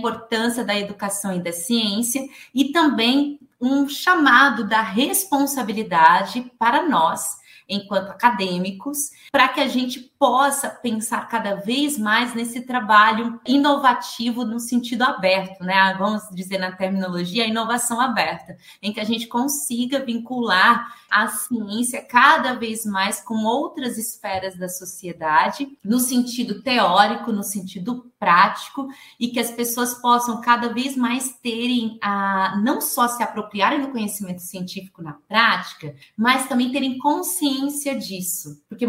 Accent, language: Brazilian, Portuguese